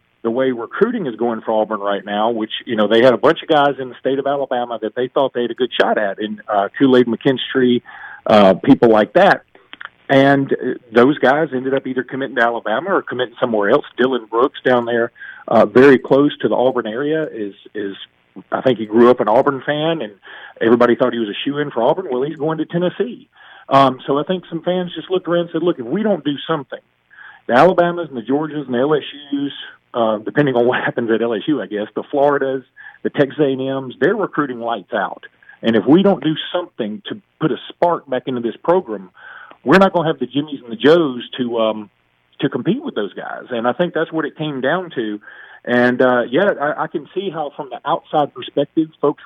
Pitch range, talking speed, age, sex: 120-160 Hz, 225 wpm, 40-59, male